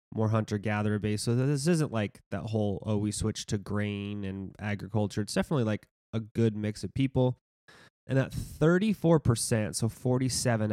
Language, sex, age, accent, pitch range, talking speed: English, male, 30-49, American, 100-120 Hz, 160 wpm